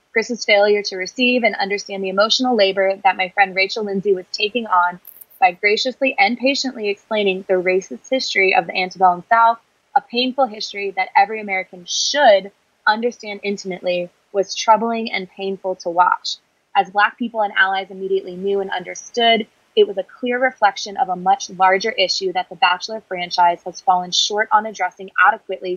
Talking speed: 170 wpm